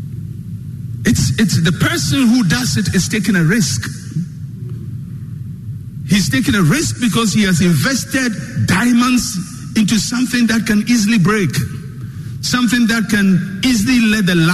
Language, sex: English, male